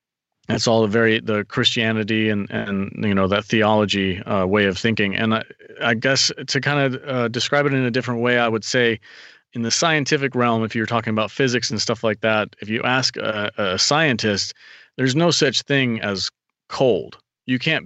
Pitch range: 110-125 Hz